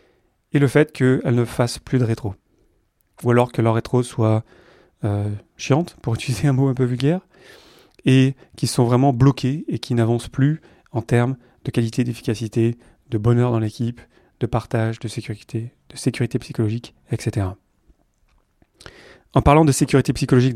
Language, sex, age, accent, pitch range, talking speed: French, male, 30-49, French, 115-135 Hz, 160 wpm